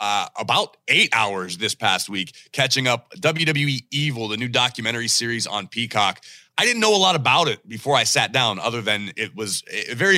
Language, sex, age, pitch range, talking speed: English, male, 30-49, 110-145 Hz, 200 wpm